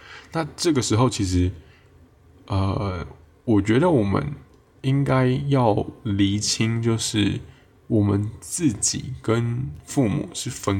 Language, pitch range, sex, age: Chinese, 100-120 Hz, male, 20-39